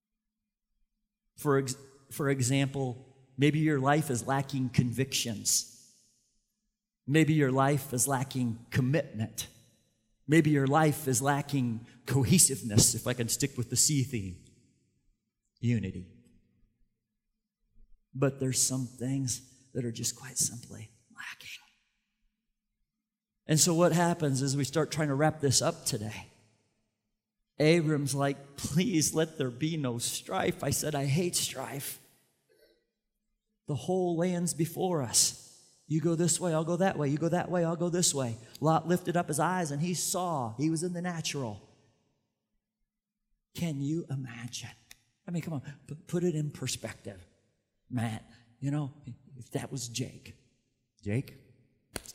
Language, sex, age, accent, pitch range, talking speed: English, male, 40-59, American, 120-160 Hz, 140 wpm